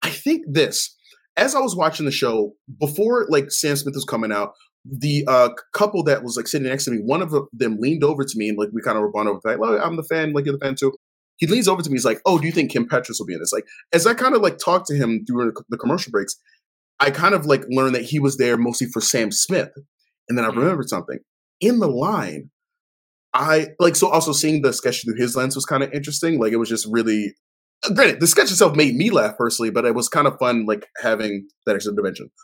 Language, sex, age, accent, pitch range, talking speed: English, male, 20-39, American, 120-170 Hz, 260 wpm